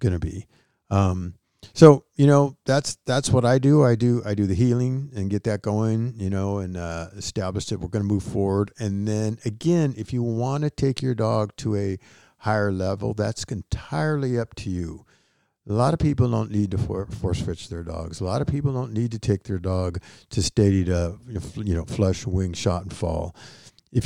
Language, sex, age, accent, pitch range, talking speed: English, male, 50-69, American, 100-130 Hz, 210 wpm